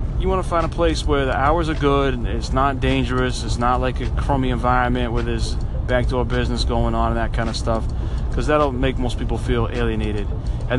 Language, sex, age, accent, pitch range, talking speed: English, male, 30-49, American, 110-135 Hz, 215 wpm